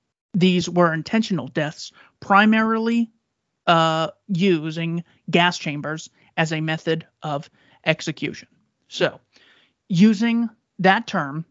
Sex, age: male, 30-49